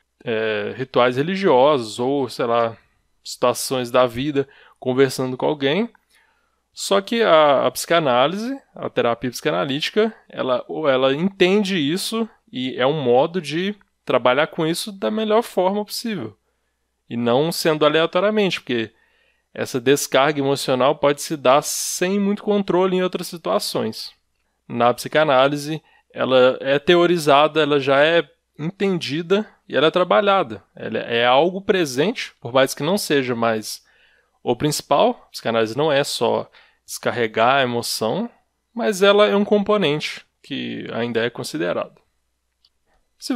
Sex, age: male, 20-39